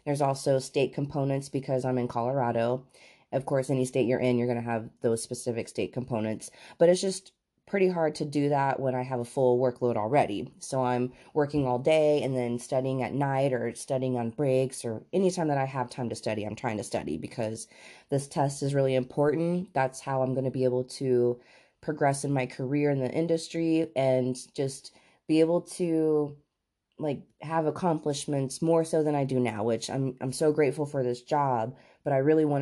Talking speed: 200 wpm